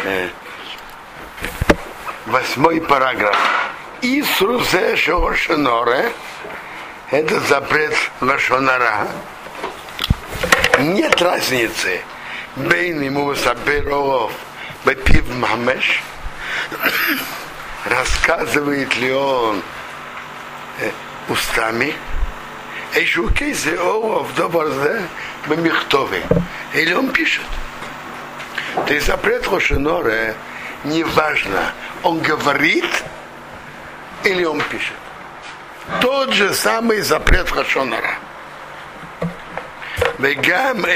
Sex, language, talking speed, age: male, Russian, 50 wpm, 60-79